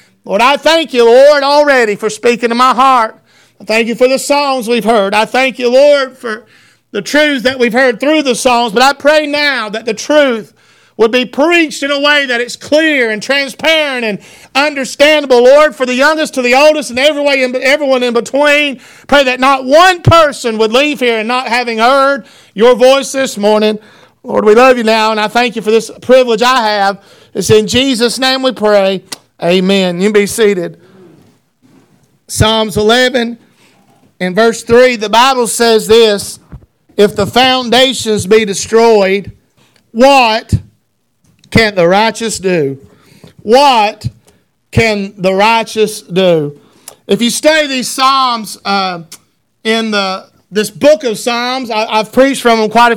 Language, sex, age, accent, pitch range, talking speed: English, male, 40-59, American, 215-265 Hz, 165 wpm